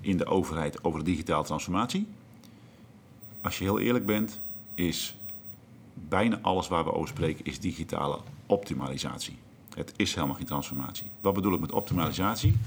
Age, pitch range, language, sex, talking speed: 50-69, 85-115 Hz, Dutch, male, 150 wpm